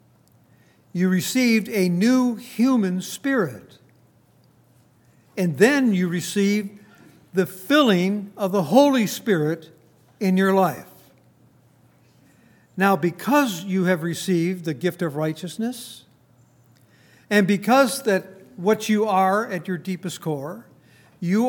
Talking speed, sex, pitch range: 110 wpm, male, 180-220 Hz